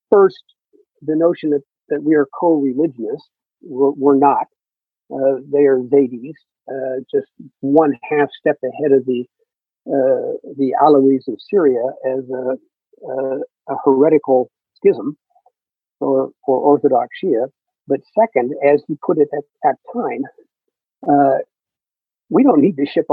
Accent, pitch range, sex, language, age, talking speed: American, 135-220 Hz, male, English, 50-69, 135 wpm